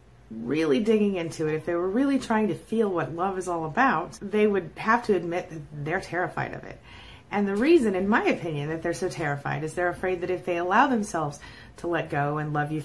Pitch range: 145-195 Hz